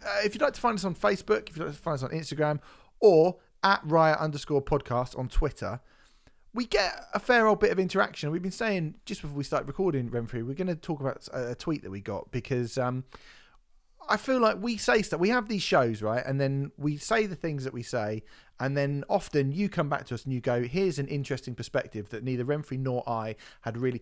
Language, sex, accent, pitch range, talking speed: English, male, British, 120-160 Hz, 235 wpm